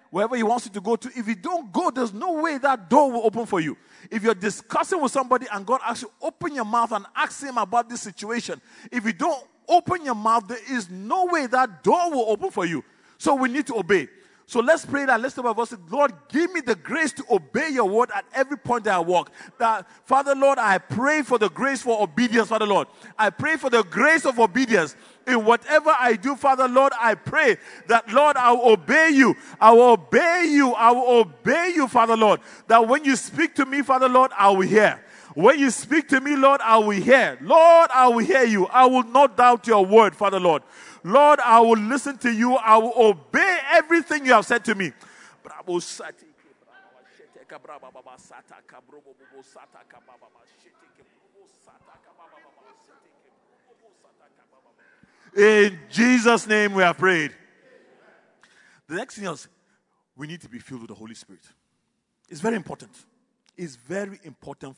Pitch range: 210-275 Hz